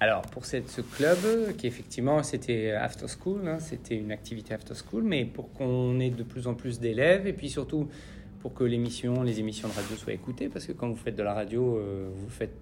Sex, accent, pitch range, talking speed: male, French, 110-130 Hz, 235 wpm